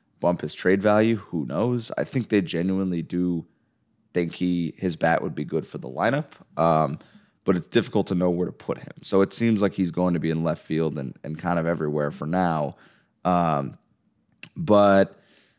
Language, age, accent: English, 30-49, American